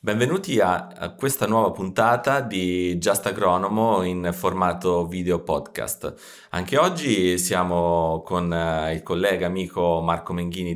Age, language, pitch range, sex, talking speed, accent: 30-49, Italian, 85-95 Hz, male, 125 wpm, native